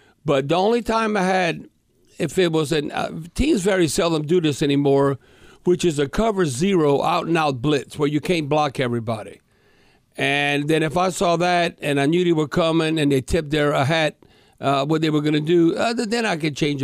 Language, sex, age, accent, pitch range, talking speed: English, male, 60-79, American, 145-185 Hz, 210 wpm